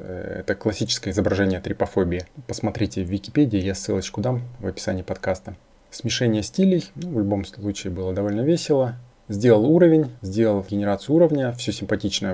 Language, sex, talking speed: Russian, male, 140 wpm